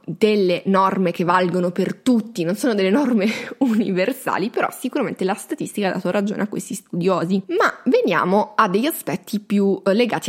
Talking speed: 165 wpm